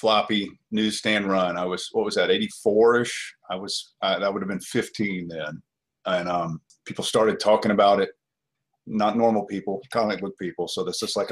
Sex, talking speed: male, 190 wpm